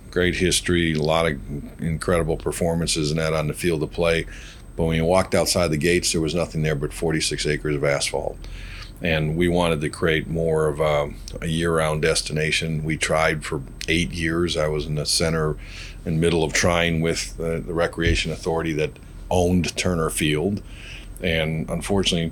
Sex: male